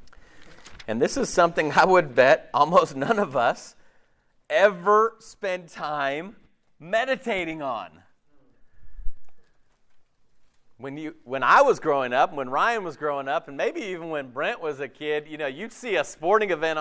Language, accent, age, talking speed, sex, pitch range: English, American, 40-59, 155 wpm, male, 150-220 Hz